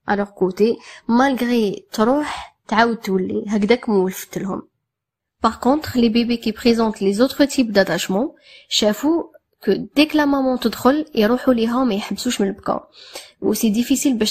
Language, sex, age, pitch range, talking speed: Arabic, female, 20-39, 205-255 Hz, 160 wpm